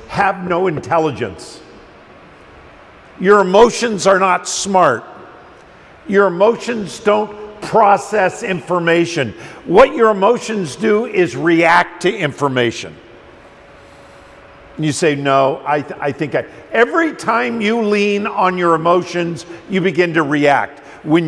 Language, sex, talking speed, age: English, male, 115 wpm, 50-69